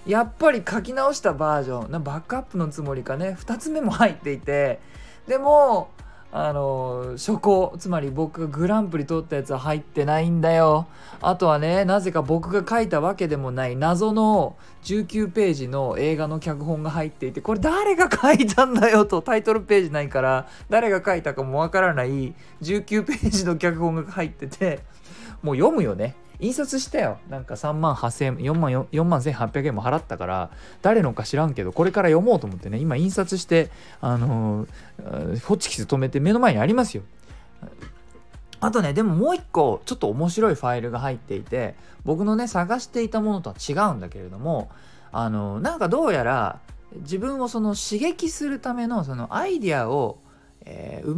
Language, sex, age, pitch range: Japanese, male, 20-39, 140-220 Hz